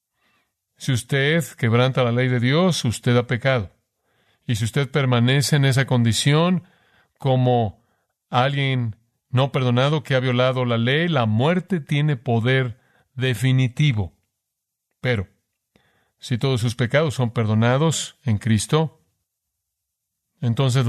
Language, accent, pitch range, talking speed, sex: Spanish, Mexican, 115-130 Hz, 120 wpm, male